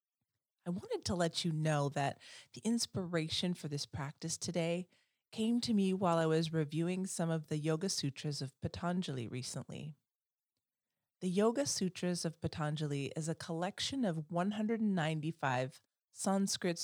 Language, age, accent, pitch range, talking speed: English, 30-49, American, 150-180 Hz, 140 wpm